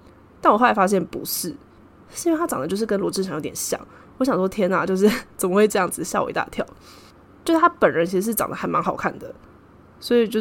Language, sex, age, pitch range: Chinese, female, 10-29, 175-225 Hz